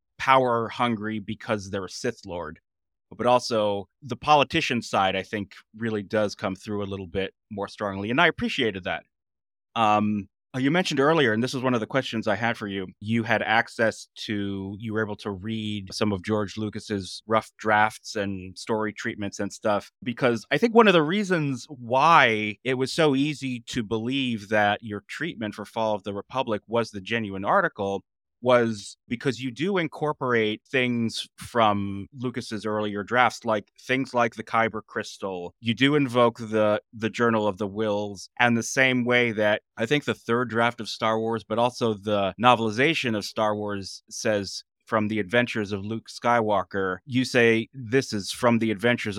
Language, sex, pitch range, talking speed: English, male, 105-125 Hz, 180 wpm